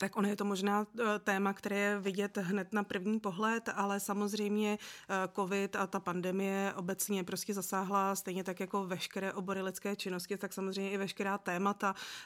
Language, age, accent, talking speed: Czech, 30-49, native, 165 wpm